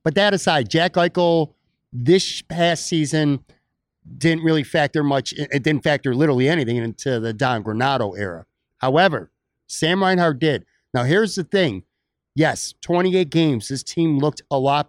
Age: 50-69